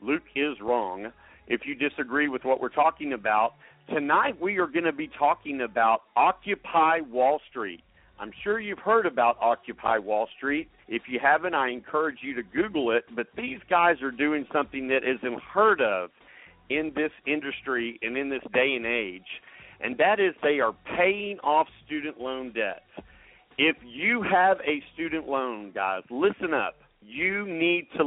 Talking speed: 170 wpm